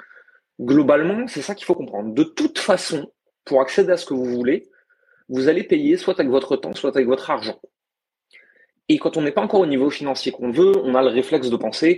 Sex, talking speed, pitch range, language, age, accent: male, 220 wpm, 135-200 Hz, French, 30-49, French